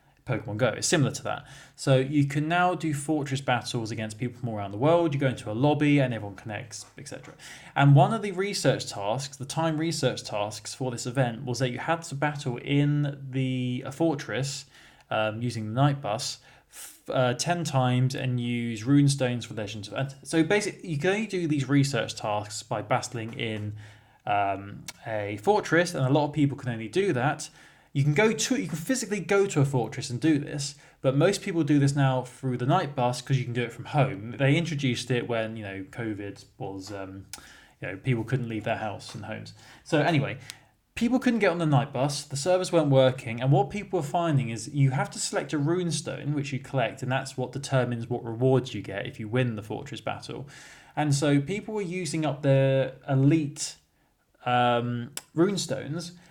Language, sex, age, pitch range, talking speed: English, male, 20-39, 120-150 Hz, 205 wpm